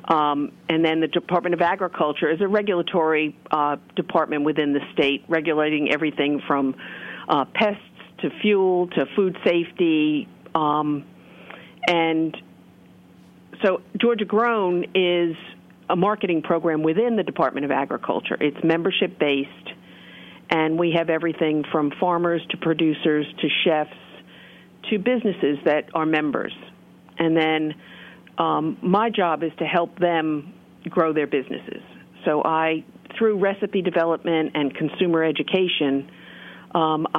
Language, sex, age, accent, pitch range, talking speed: English, female, 50-69, American, 150-180 Hz, 125 wpm